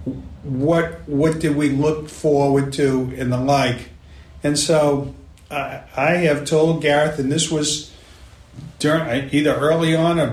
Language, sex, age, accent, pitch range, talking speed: English, male, 50-69, American, 125-160 Hz, 145 wpm